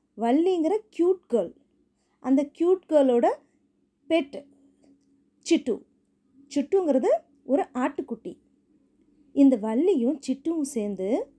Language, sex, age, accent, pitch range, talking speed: Tamil, female, 30-49, native, 235-305 Hz, 80 wpm